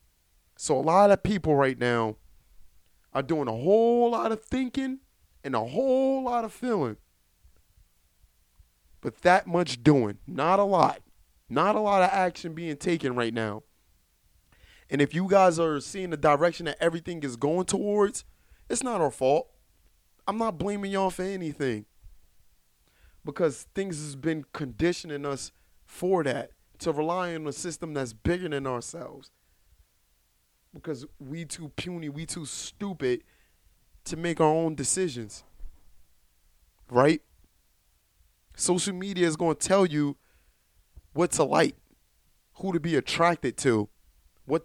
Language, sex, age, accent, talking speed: English, male, 30-49, American, 140 wpm